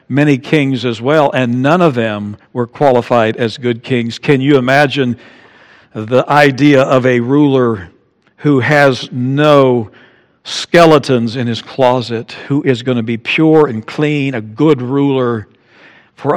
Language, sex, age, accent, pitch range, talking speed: English, male, 60-79, American, 120-170 Hz, 145 wpm